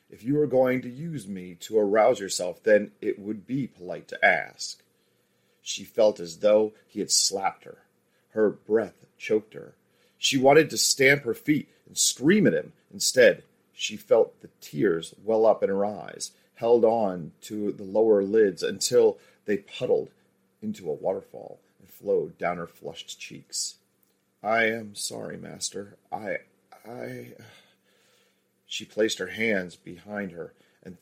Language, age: English, 40-59